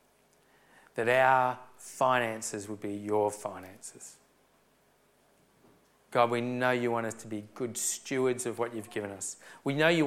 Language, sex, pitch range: English, male, 110-130 Hz